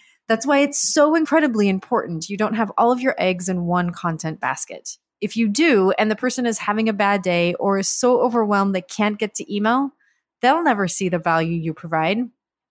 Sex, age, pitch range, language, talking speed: female, 30-49, 185-245 Hz, English, 210 wpm